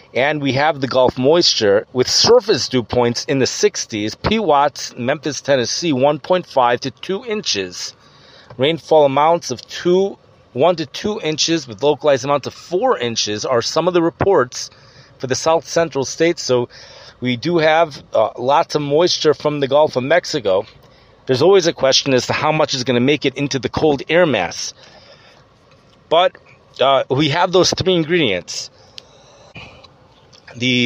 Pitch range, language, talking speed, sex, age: 125-155 Hz, English, 160 wpm, male, 40-59